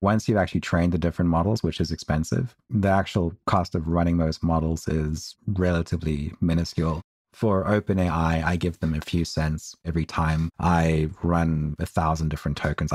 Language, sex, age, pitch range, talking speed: English, male, 30-49, 80-95 Hz, 165 wpm